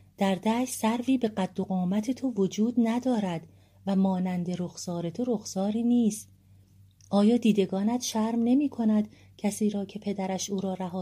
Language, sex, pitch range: Persian, female, 170-200 Hz